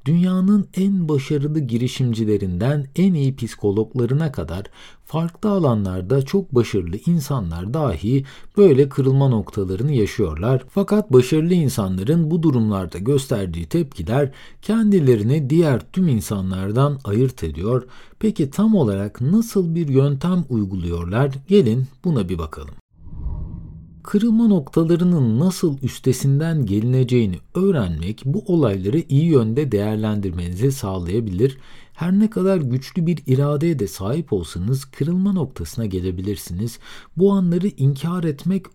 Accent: native